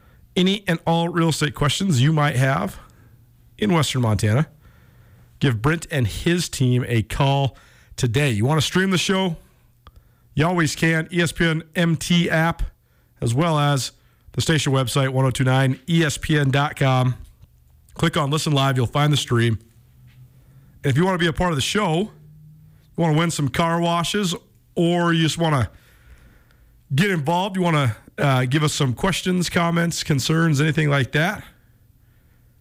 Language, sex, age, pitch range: English, male, 40-59, 120-170 Hz